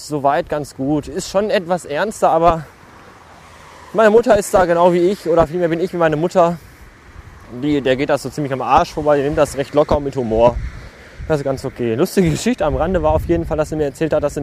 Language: German